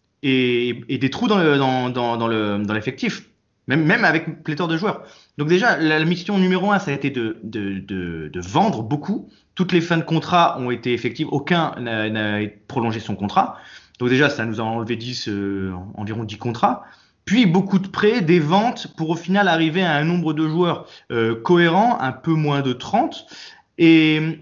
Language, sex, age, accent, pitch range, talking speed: French, male, 20-39, French, 120-170 Hz, 200 wpm